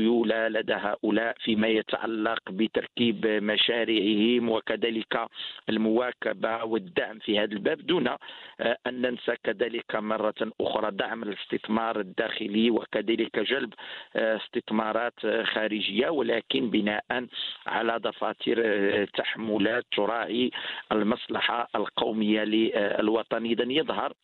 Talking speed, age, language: 85 wpm, 50-69, English